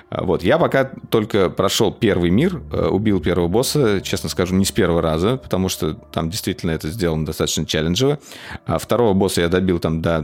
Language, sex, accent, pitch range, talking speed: Russian, male, native, 85-120 Hz, 180 wpm